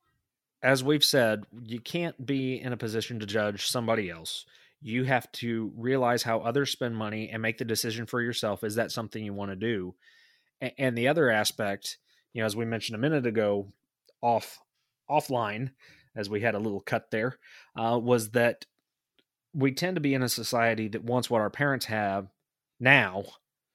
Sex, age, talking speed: male, 30-49, 180 wpm